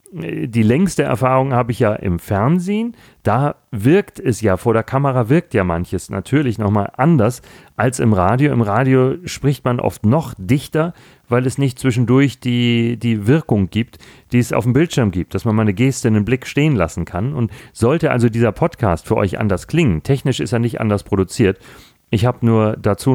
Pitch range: 105-130 Hz